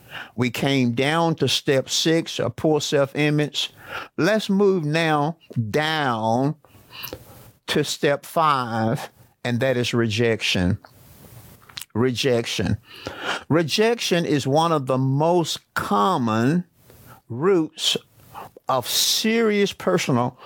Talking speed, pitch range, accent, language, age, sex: 95 wpm, 125-170 Hz, American, English, 50-69, male